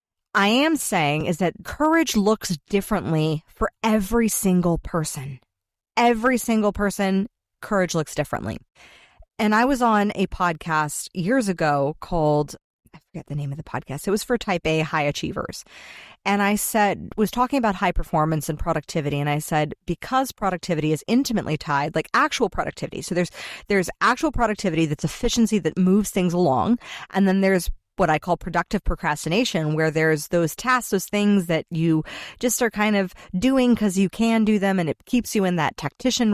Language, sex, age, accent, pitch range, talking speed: English, female, 30-49, American, 160-215 Hz, 175 wpm